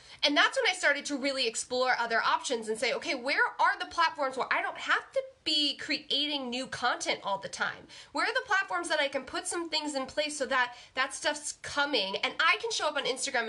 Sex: female